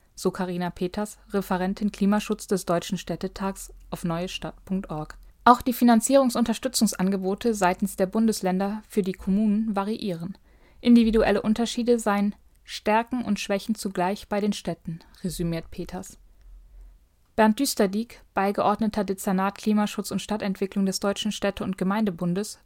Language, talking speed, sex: German, 115 wpm, female